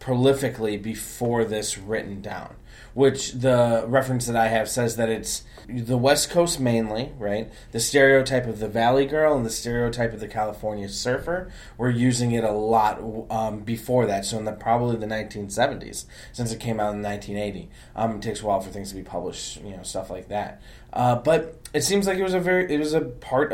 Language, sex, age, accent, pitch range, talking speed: English, male, 20-39, American, 110-130 Hz, 210 wpm